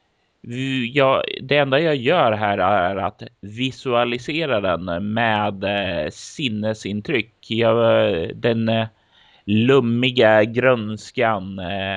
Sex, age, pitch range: male, 30-49, 105-130 Hz